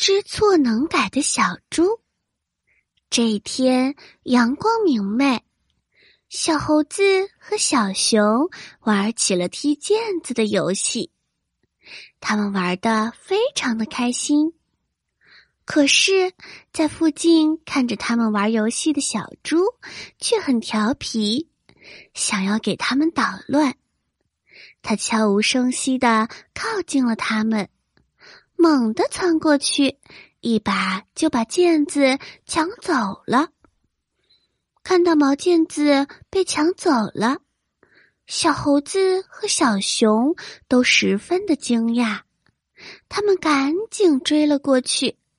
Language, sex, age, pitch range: Chinese, female, 20-39, 225-330 Hz